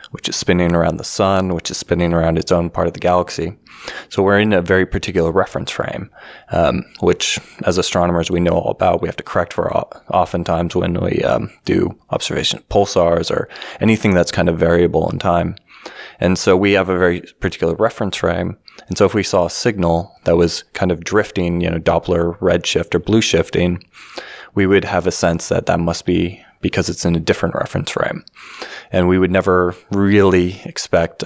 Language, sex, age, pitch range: English, male, 20-39, 85-95 Hz